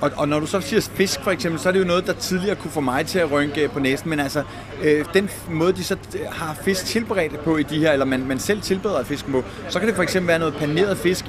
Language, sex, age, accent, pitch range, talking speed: Danish, male, 30-49, native, 135-180 Hz, 285 wpm